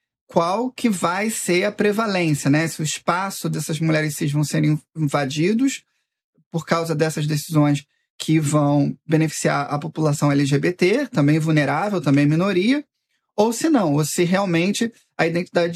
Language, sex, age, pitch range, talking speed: Portuguese, male, 20-39, 160-205 Hz, 145 wpm